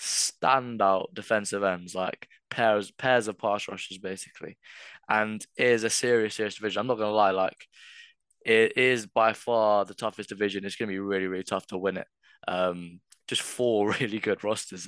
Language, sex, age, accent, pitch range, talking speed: English, male, 20-39, British, 100-115 Hz, 175 wpm